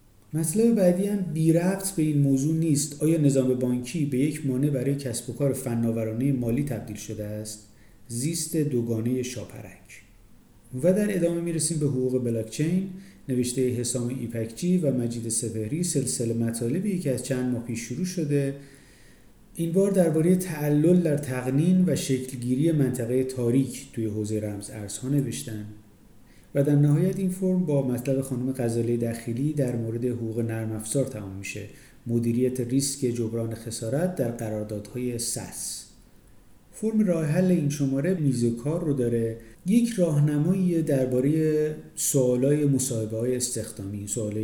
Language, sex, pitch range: Persian, male, 115-155 Hz